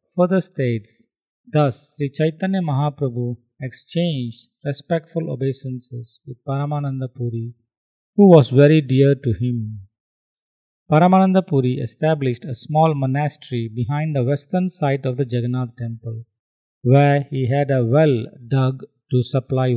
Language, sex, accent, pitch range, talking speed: English, male, Indian, 125-155 Hz, 120 wpm